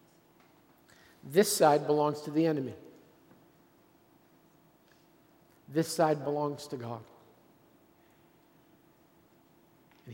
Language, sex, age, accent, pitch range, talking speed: English, male, 50-69, American, 145-165 Hz, 70 wpm